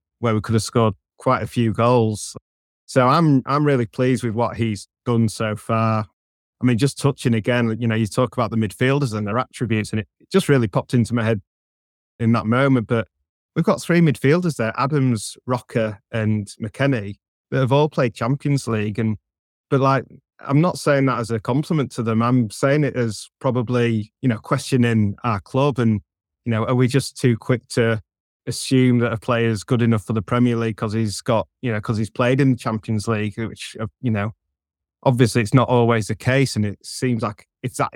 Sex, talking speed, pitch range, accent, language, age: male, 210 wpm, 110-125 Hz, British, English, 20-39